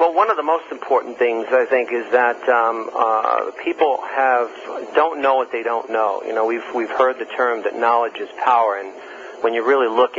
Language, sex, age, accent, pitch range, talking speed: English, male, 50-69, American, 110-160 Hz, 220 wpm